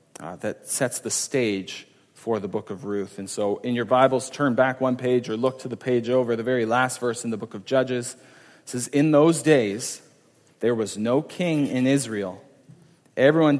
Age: 40-59